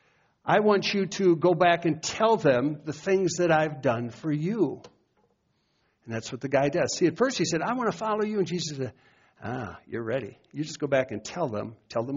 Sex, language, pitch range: male, English, 130-190 Hz